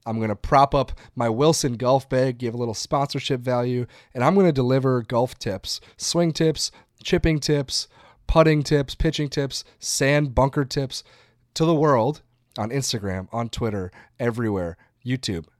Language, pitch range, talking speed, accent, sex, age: English, 110-135 Hz, 160 wpm, American, male, 30-49